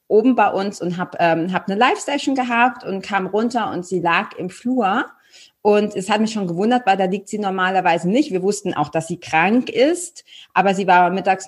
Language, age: German, 30-49